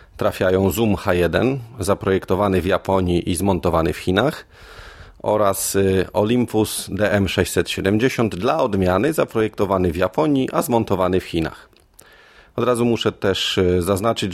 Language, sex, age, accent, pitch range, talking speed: Polish, male, 40-59, native, 95-110 Hz, 115 wpm